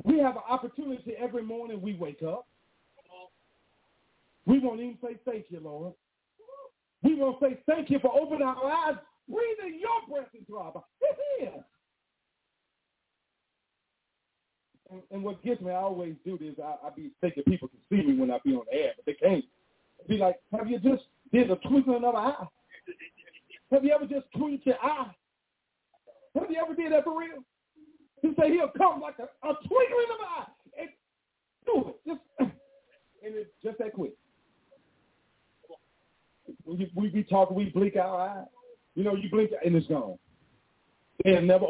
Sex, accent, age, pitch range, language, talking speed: male, American, 40-59, 195-285 Hz, English, 170 wpm